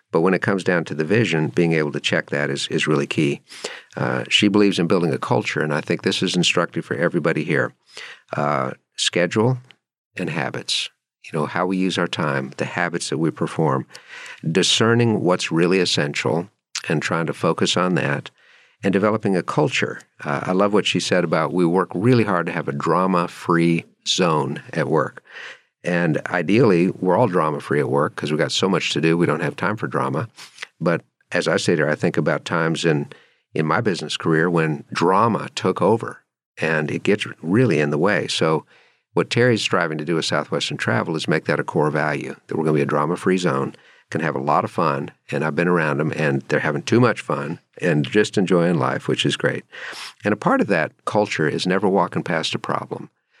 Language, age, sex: English, 50-69, male